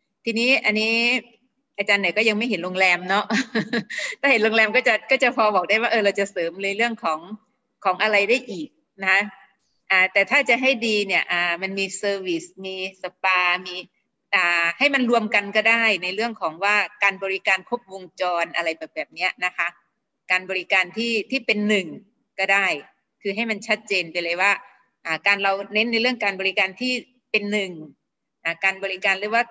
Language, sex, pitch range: Thai, female, 190-230 Hz